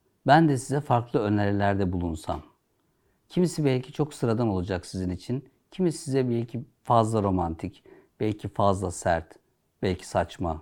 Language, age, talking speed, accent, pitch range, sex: Turkish, 60-79, 130 wpm, native, 100-145 Hz, male